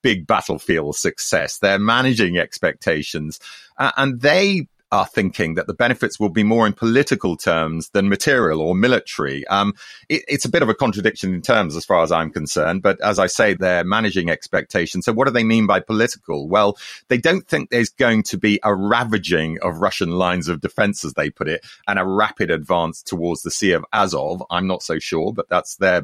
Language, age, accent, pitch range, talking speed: English, 30-49, British, 90-120 Hz, 205 wpm